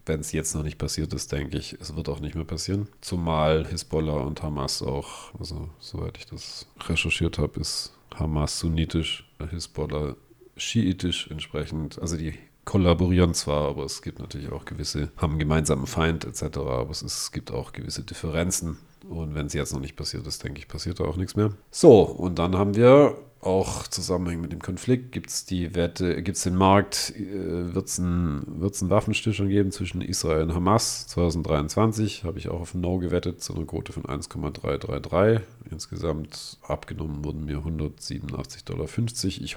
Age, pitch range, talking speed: 40-59, 75-95 Hz, 175 wpm